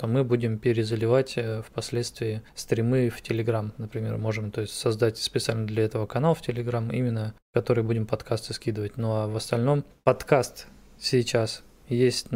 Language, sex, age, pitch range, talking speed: Russian, male, 20-39, 110-125 Hz, 150 wpm